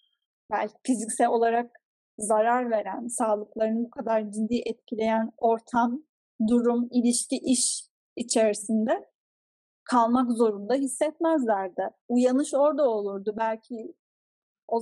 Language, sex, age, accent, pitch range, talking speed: Turkish, female, 10-29, native, 215-270 Hz, 95 wpm